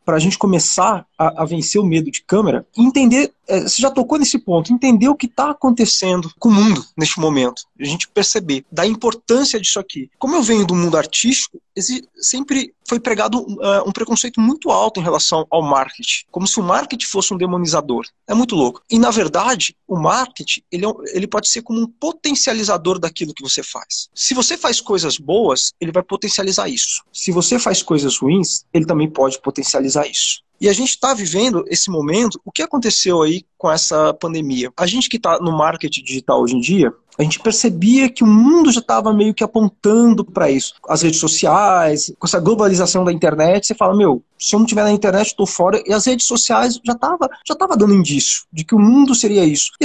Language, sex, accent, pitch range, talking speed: Portuguese, male, Brazilian, 165-240 Hz, 200 wpm